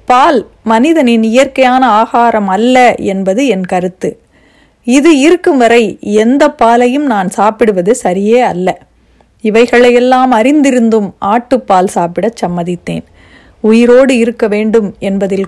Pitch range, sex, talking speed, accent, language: 200-255 Hz, female, 105 wpm, native, Tamil